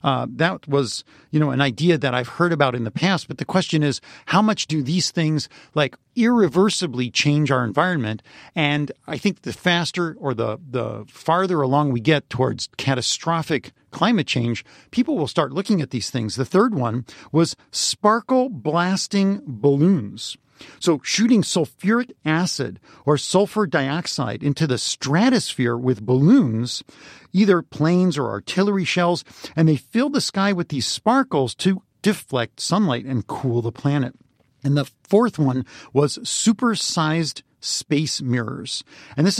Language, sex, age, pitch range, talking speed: English, male, 50-69, 135-190 Hz, 150 wpm